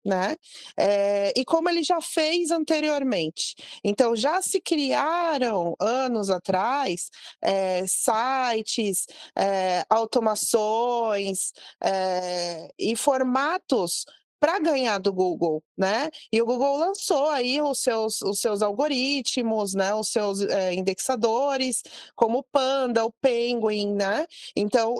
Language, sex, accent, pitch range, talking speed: Portuguese, female, Brazilian, 210-305 Hz, 100 wpm